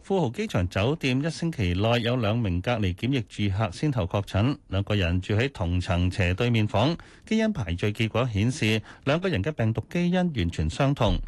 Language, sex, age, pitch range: Chinese, male, 30-49, 100-135 Hz